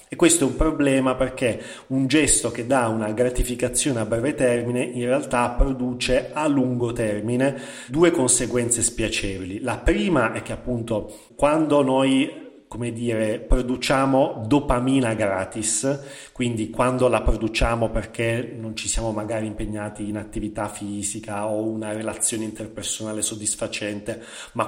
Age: 30-49